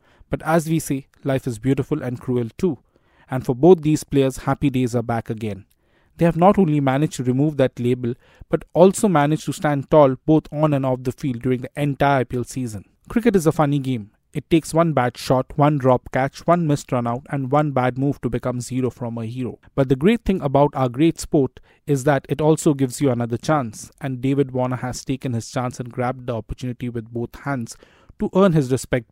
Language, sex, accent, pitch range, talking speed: English, male, Indian, 125-150 Hz, 220 wpm